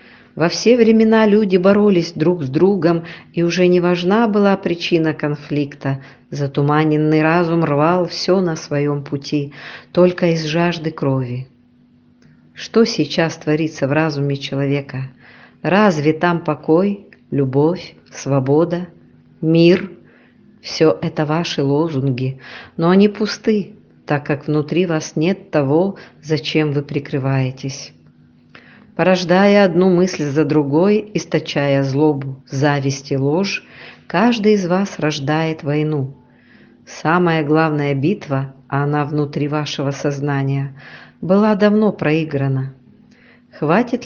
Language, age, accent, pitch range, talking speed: Russian, 50-69, native, 140-180 Hz, 110 wpm